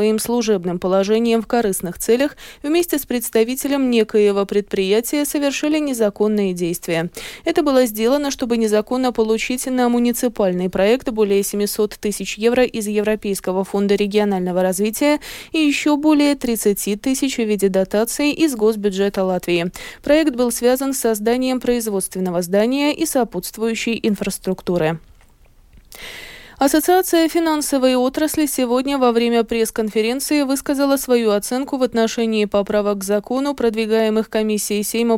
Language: Russian